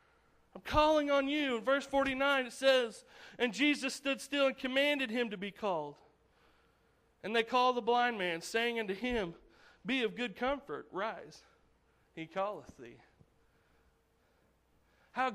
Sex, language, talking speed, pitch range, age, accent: male, English, 145 wpm, 225-275 Hz, 40-59, American